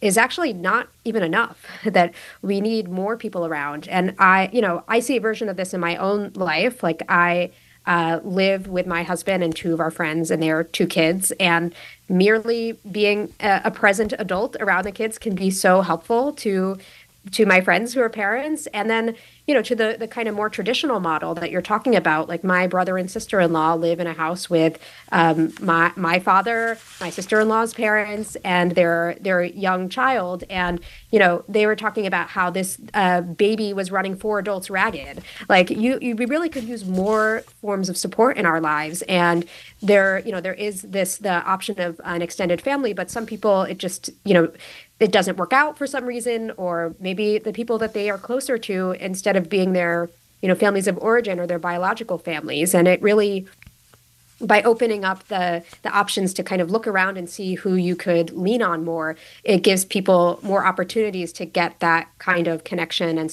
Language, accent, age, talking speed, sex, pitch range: English, American, 30-49, 200 wpm, female, 175-215 Hz